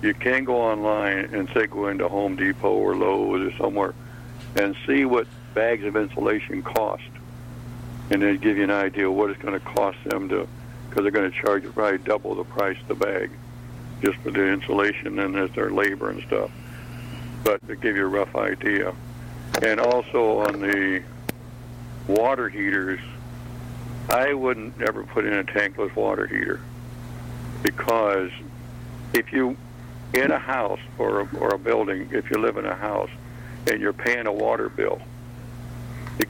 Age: 60-79